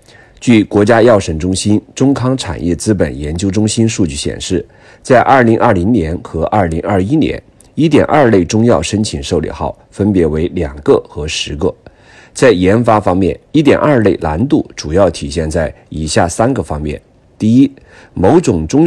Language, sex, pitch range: Chinese, male, 85-115 Hz